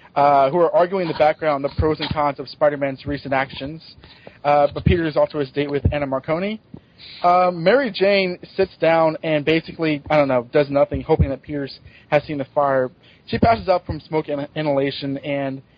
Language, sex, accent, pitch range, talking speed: English, male, American, 135-165 Hz, 200 wpm